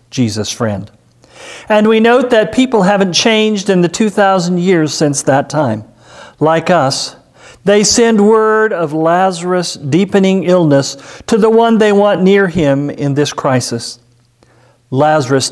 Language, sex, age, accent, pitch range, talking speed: English, male, 50-69, American, 125-195 Hz, 140 wpm